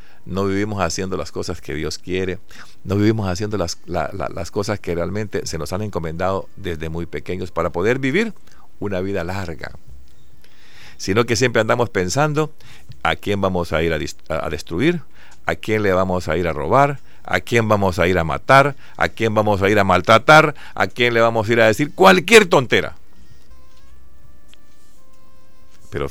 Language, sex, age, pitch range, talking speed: Spanish, male, 50-69, 85-115 Hz, 175 wpm